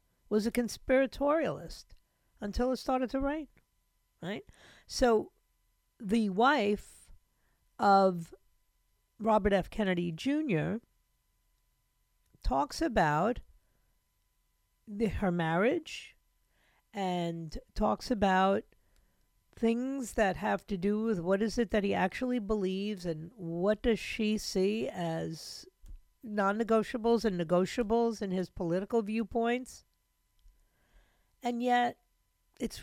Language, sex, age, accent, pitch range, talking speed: English, female, 50-69, American, 190-245 Hz, 95 wpm